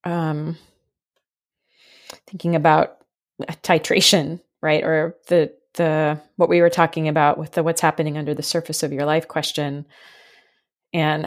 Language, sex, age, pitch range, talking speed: English, female, 20-39, 155-180 Hz, 135 wpm